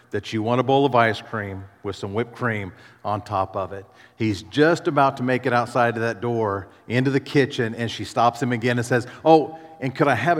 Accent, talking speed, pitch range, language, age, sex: American, 235 wpm, 125-155 Hz, English, 40-59, male